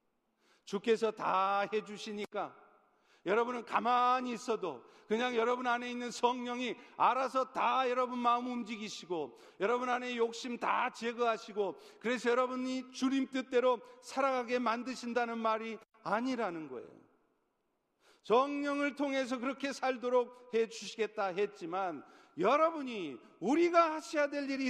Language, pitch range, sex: Korean, 200-250 Hz, male